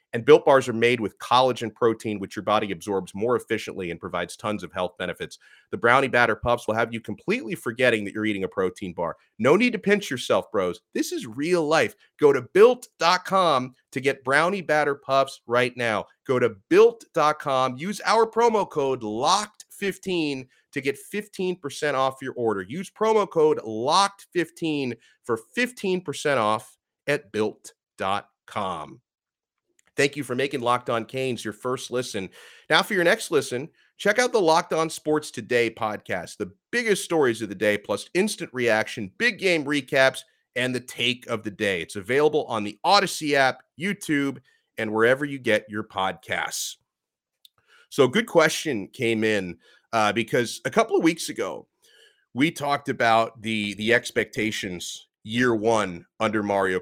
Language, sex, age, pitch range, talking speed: English, male, 40-59, 110-175 Hz, 165 wpm